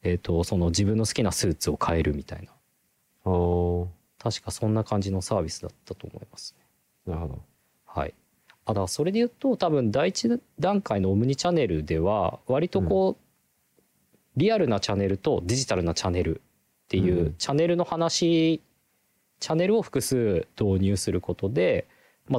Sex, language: male, Japanese